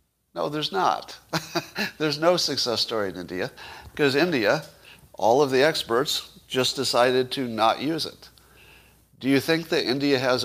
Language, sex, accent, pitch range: English, male, American, 110-140 Hz